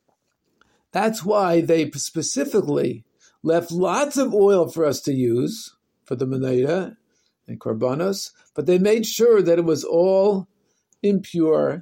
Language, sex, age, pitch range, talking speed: English, male, 50-69, 155-200 Hz, 130 wpm